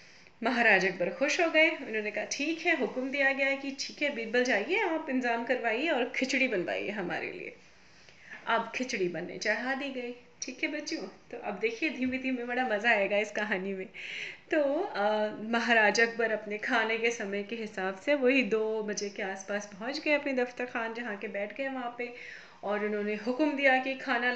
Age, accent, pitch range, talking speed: 30-49, native, 210-260 Hz, 190 wpm